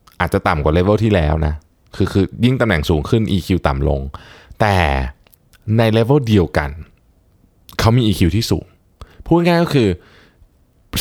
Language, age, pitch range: Thai, 20-39, 85-110 Hz